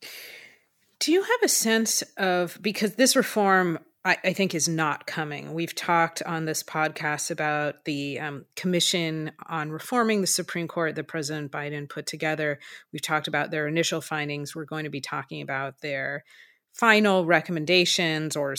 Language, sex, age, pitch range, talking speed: English, female, 30-49, 155-185 Hz, 160 wpm